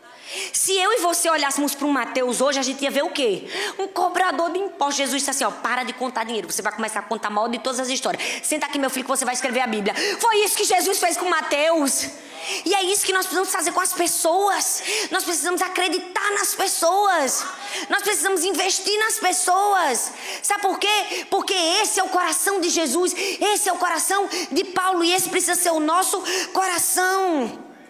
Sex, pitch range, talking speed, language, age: female, 285-380 Hz, 215 wpm, Portuguese, 20-39